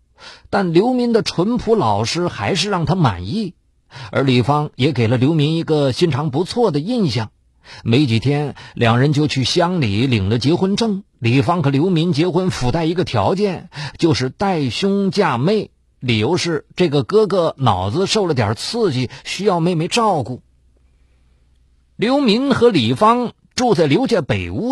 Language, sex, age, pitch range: Chinese, male, 50-69, 125-185 Hz